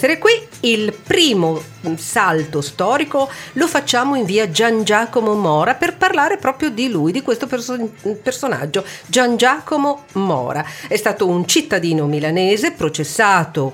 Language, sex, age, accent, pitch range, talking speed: Italian, female, 50-69, native, 155-225 Hz, 125 wpm